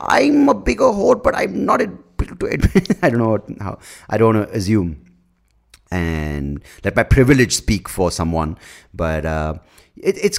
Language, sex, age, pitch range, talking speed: English, male, 30-49, 90-130 Hz, 160 wpm